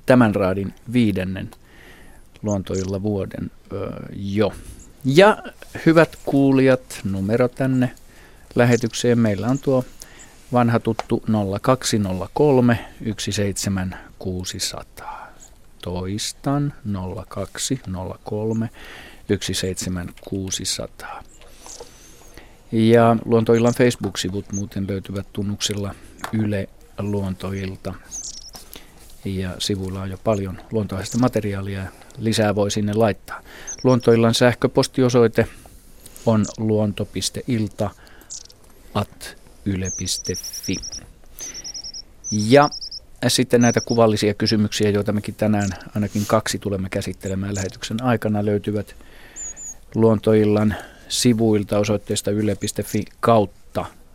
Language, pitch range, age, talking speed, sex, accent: Finnish, 95-115 Hz, 50-69, 75 wpm, male, native